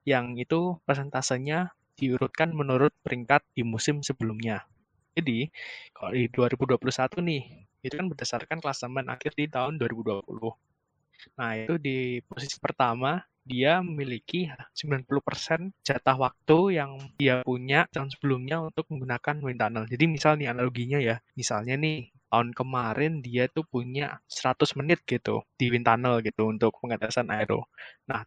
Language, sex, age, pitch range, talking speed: Indonesian, male, 20-39, 120-150 Hz, 135 wpm